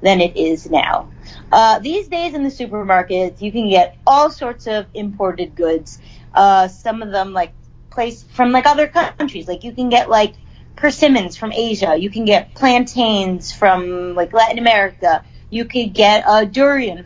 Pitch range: 195-255 Hz